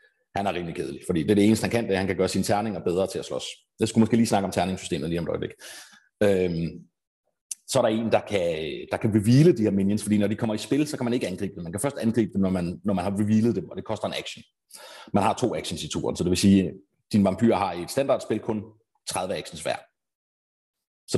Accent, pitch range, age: native, 95-115 Hz, 30-49